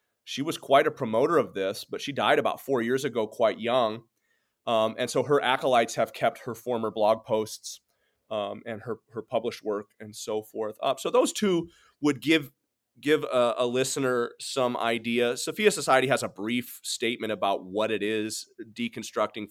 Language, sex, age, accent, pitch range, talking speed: English, male, 30-49, American, 120-180 Hz, 180 wpm